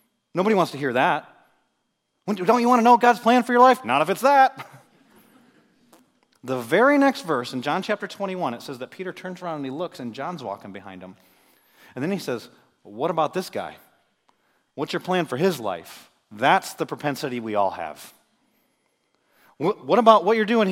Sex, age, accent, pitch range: male, 30-49, American, 135-215 Hz